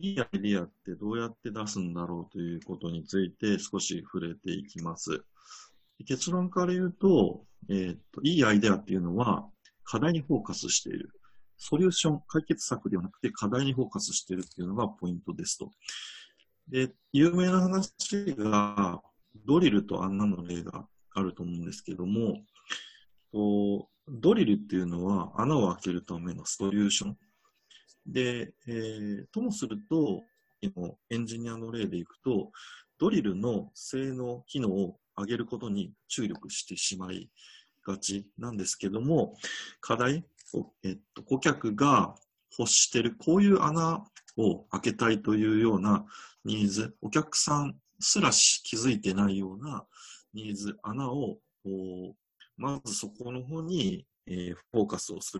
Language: Japanese